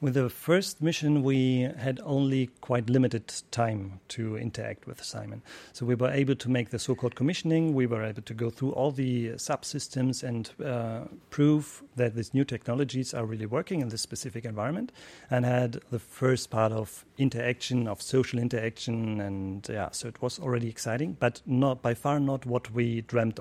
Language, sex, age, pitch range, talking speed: English, male, 40-59, 115-135 Hz, 185 wpm